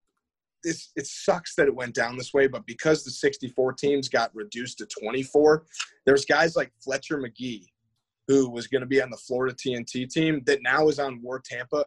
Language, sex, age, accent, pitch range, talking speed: English, male, 30-49, American, 125-155 Hz, 190 wpm